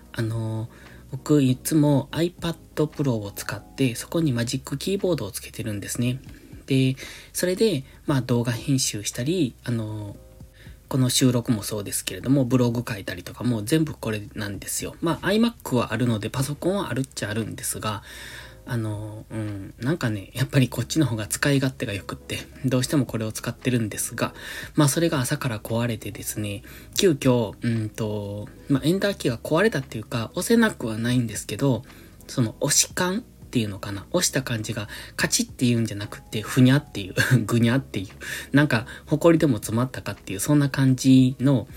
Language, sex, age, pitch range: Japanese, male, 20-39, 110-140 Hz